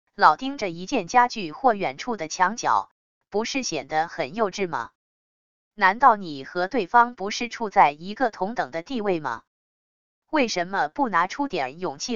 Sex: female